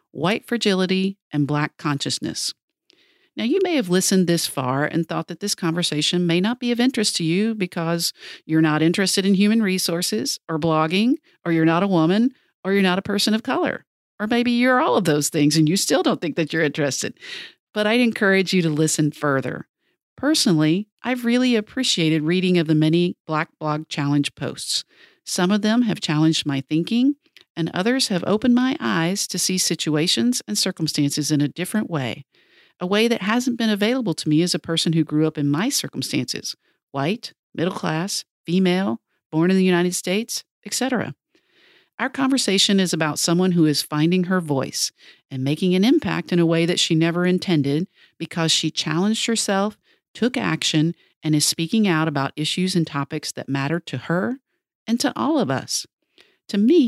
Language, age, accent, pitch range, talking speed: English, 50-69, American, 160-225 Hz, 185 wpm